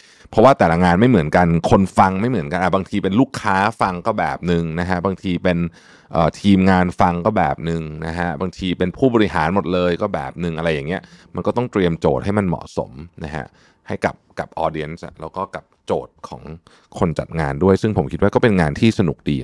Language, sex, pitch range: Thai, male, 80-100 Hz